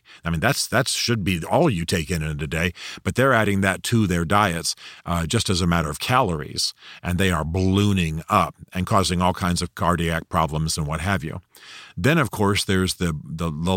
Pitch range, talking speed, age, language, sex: 85-115 Hz, 220 wpm, 50-69, English, male